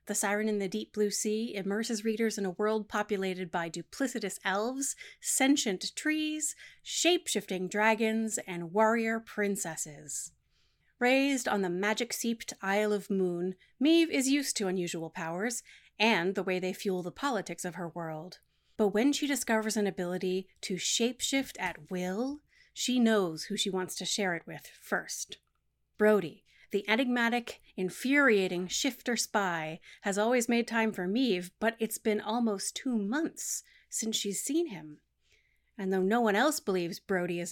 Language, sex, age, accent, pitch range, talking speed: English, female, 30-49, American, 185-235 Hz, 155 wpm